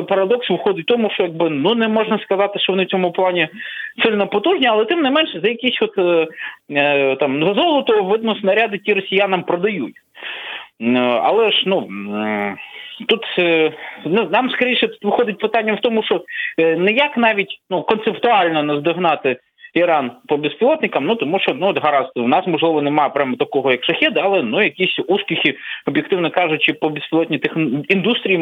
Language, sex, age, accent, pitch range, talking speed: Ukrainian, male, 20-39, native, 150-220 Hz, 165 wpm